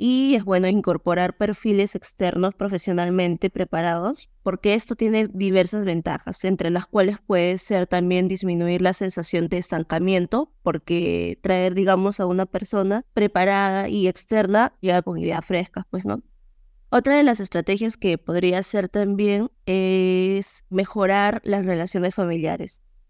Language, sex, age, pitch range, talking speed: Spanish, female, 20-39, 180-200 Hz, 135 wpm